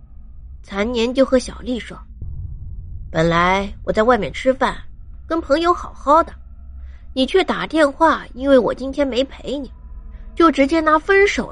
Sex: female